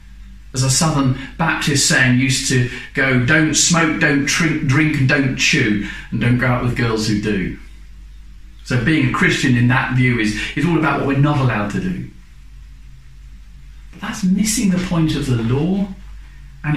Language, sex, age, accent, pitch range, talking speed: English, male, 40-59, British, 110-160 Hz, 180 wpm